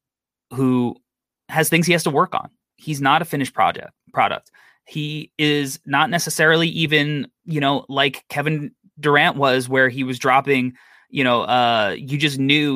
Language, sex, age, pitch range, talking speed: English, male, 20-39, 125-145 Hz, 165 wpm